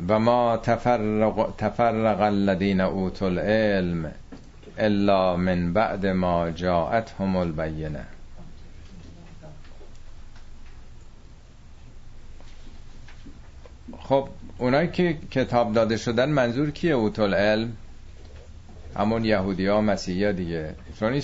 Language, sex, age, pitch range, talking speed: Persian, male, 50-69, 95-120 Hz, 75 wpm